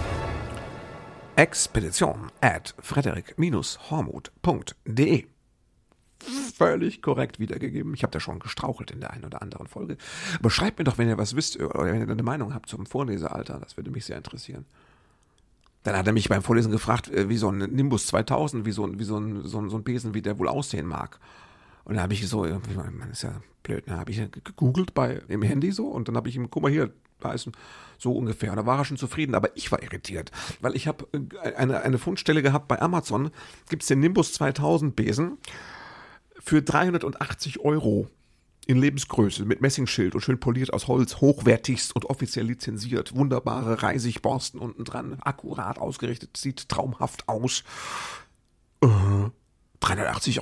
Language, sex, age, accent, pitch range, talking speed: German, male, 50-69, German, 110-140 Hz, 170 wpm